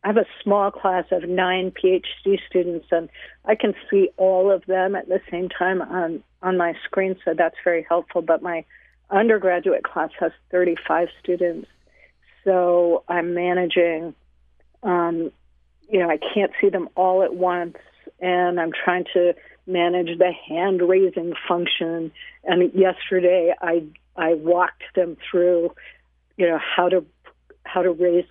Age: 50-69